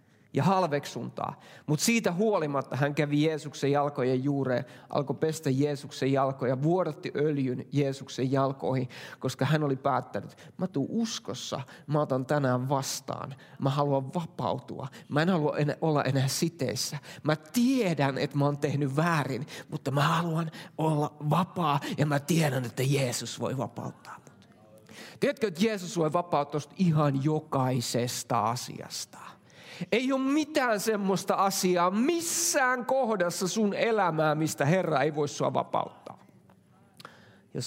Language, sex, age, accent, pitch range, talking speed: English, male, 30-49, Finnish, 135-170 Hz, 130 wpm